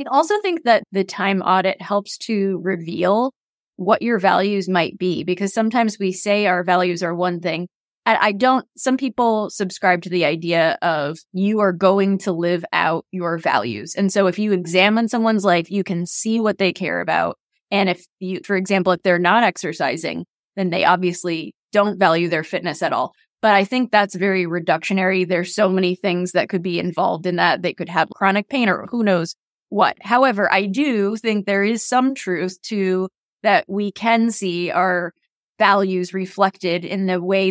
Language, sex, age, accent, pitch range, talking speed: English, female, 20-39, American, 180-205 Hz, 185 wpm